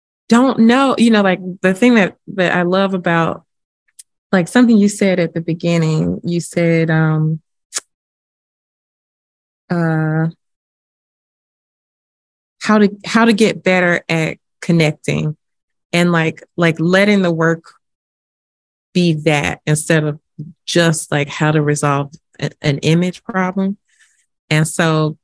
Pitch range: 155-190 Hz